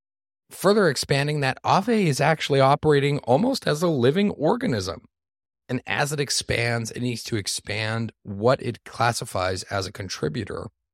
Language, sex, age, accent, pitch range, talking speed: English, male, 40-59, American, 95-135 Hz, 145 wpm